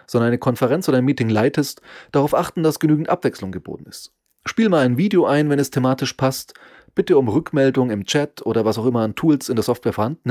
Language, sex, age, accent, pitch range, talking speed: German, male, 30-49, German, 120-155 Hz, 220 wpm